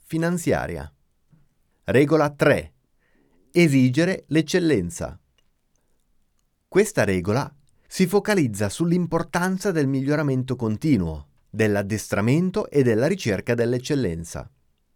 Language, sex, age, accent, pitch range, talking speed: Italian, male, 30-49, native, 95-155 Hz, 70 wpm